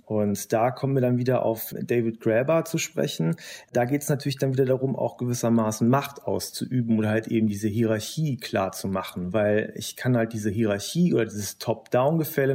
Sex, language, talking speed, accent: male, German, 185 wpm, German